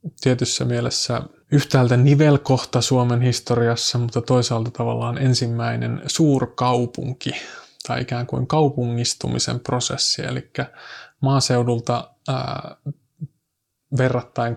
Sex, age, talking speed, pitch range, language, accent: male, 20-39, 80 wpm, 120-135 Hz, Finnish, native